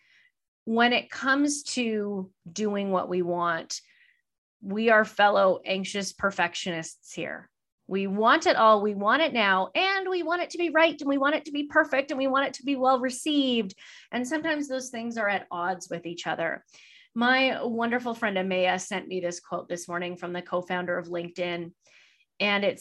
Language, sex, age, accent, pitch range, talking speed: English, female, 30-49, American, 190-260 Hz, 185 wpm